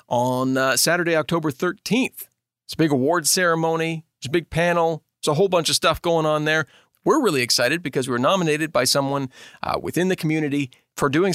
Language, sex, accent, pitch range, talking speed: English, male, American, 135-185 Hz, 200 wpm